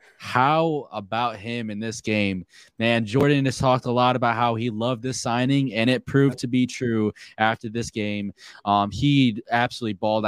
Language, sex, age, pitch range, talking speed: English, male, 20-39, 110-130 Hz, 180 wpm